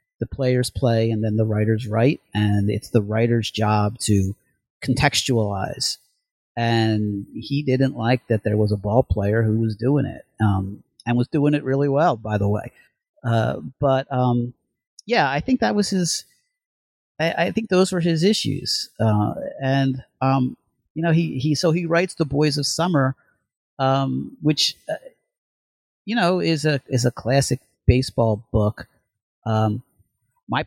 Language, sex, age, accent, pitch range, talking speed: English, male, 40-59, American, 115-145 Hz, 160 wpm